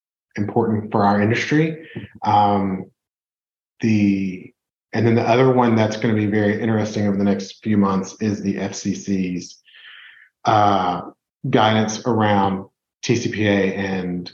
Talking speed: 125 wpm